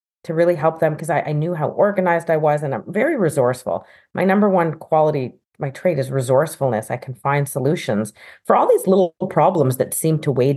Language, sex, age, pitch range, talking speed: English, female, 30-49, 135-170 Hz, 210 wpm